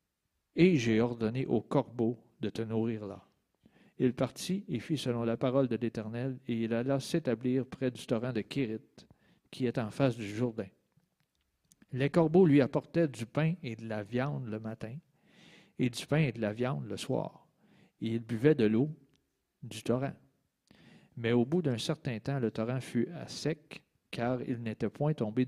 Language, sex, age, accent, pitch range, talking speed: French, male, 50-69, Canadian, 115-150 Hz, 185 wpm